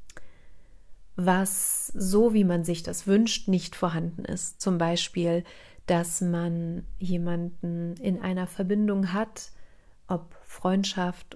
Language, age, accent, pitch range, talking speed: German, 40-59, German, 175-195 Hz, 110 wpm